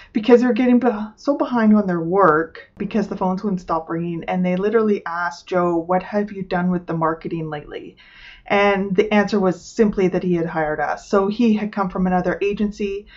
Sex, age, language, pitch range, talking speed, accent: female, 30-49, English, 170-205 Hz, 200 wpm, American